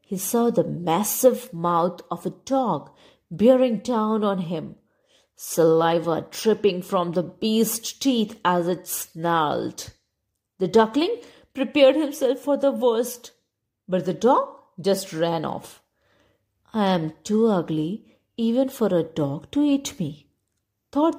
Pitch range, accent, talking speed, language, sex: 175-260 Hz, Indian, 130 wpm, English, female